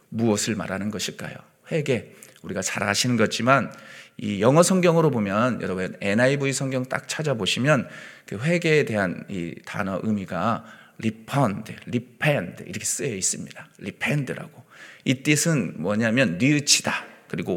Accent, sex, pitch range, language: native, male, 110-165 Hz, Korean